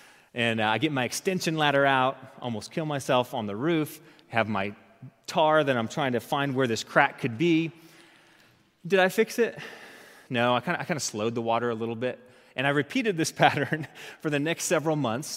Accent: American